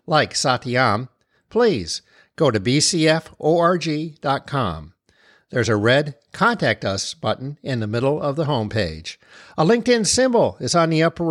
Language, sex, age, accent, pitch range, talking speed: English, male, 50-69, American, 115-165 Hz, 135 wpm